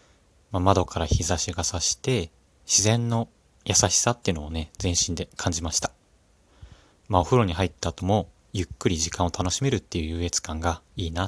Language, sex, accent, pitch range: Japanese, male, native, 85-110 Hz